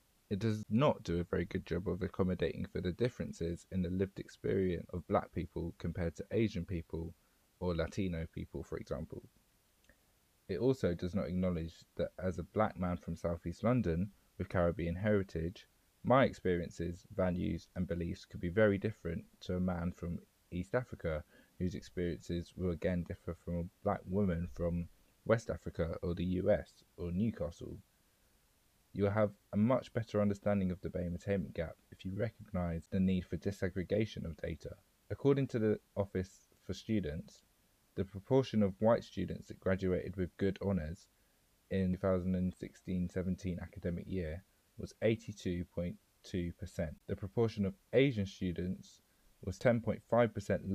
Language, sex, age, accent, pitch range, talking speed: English, male, 20-39, British, 85-100 Hz, 150 wpm